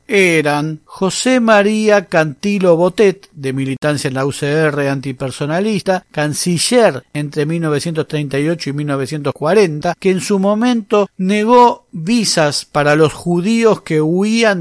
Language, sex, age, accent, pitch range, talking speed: Spanish, male, 40-59, Argentinian, 150-195 Hz, 110 wpm